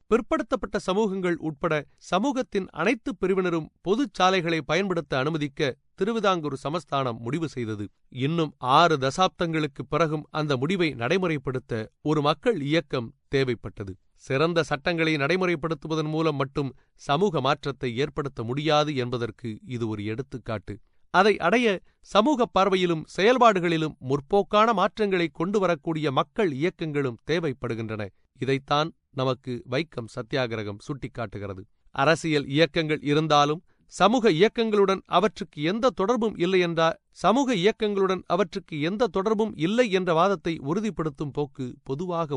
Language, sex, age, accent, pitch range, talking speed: Tamil, male, 30-49, native, 130-180 Hz, 110 wpm